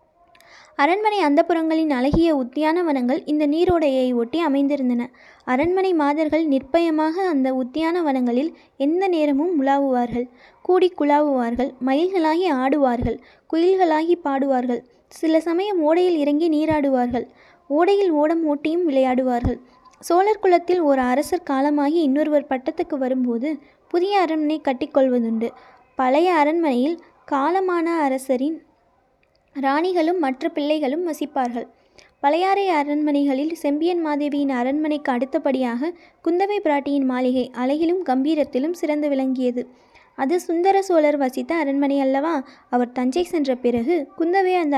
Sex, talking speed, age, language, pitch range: female, 100 wpm, 20-39, Tamil, 265-335 Hz